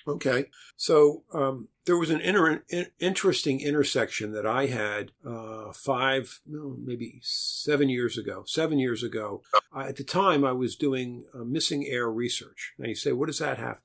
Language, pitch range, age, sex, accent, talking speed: English, 115-140 Hz, 50-69, male, American, 180 wpm